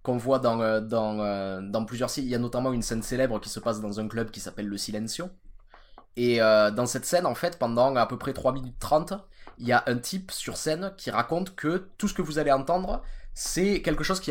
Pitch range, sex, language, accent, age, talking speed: 115-165 Hz, male, French, French, 20-39, 245 wpm